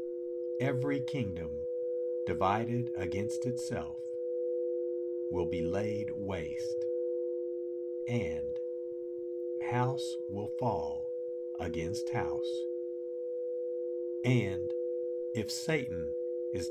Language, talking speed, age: English, 70 wpm, 50-69